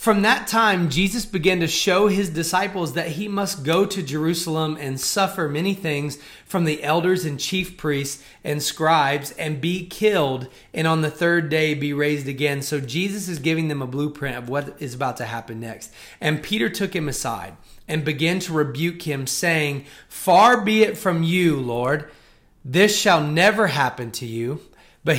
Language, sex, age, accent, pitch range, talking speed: English, male, 30-49, American, 145-190 Hz, 180 wpm